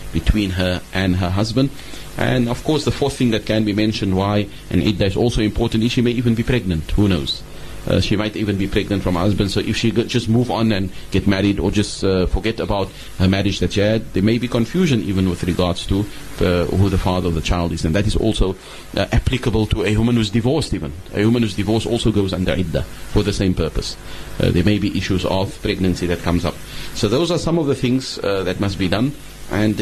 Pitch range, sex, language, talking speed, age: 90-115 Hz, male, English, 250 wpm, 30-49